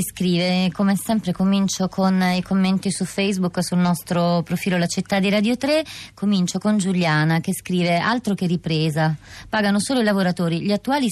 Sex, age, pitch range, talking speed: female, 20-39, 160-190 Hz, 165 wpm